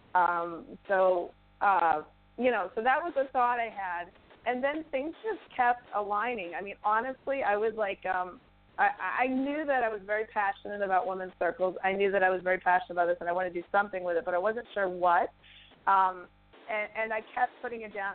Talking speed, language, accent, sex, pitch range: 220 wpm, English, American, female, 185-230 Hz